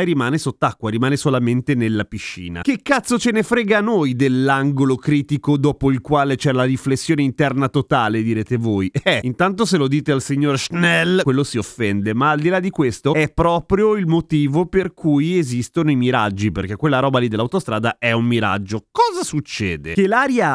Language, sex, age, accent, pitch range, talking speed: Italian, male, 30-49, native, 115-170 Hz, 185 wpm